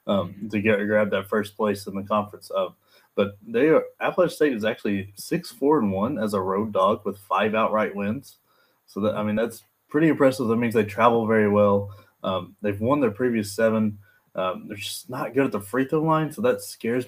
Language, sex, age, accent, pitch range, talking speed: English, male, 20-39, American, 100-115 Hz, 220 wpm